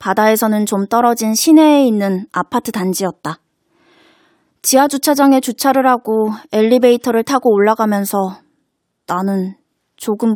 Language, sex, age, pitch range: Korean, female, 20-39, 195-250 Hz